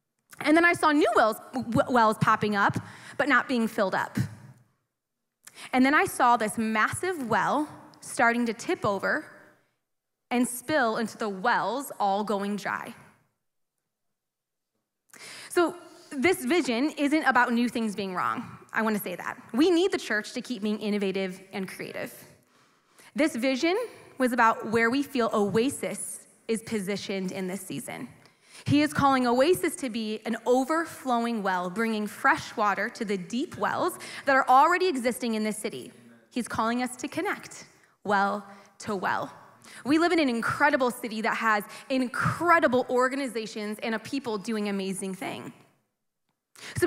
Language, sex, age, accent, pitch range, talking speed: English, female, 20-39, American, 210-280 Hz, 150 wpm